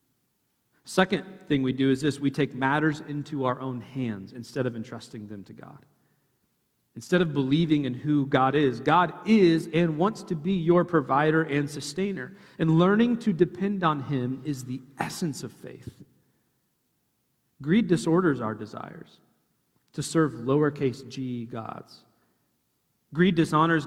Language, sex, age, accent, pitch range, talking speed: English, male, 40-59, American, 125-165 Hz, 145 wpm